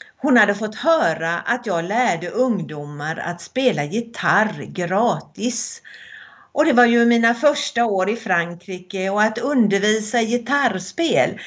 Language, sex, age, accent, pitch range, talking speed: Swedish, female, 50-69, native, 175-240 Hz, 130 wpm